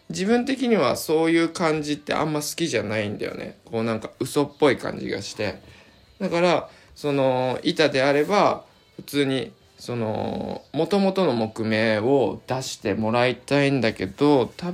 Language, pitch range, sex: Japanese, 110-160 Hz, male